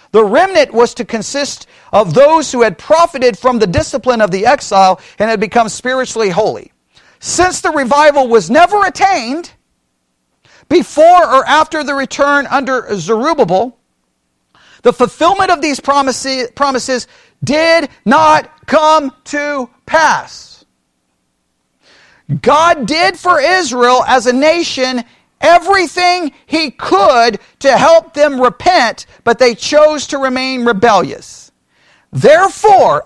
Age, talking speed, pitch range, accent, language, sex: 50-69, 120 wpm, 235-315 Hz, American, English, male